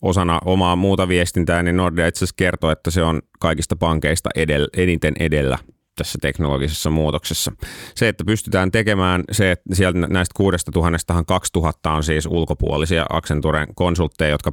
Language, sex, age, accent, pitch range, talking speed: Finnish, male, 30-49, native, 75-90 Hz, 155 wpm